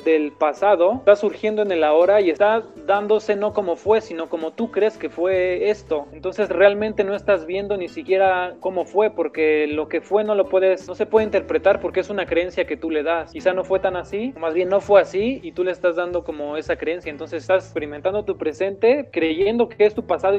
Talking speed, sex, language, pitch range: 225 wpm, male, Arabic, 160-195 Hz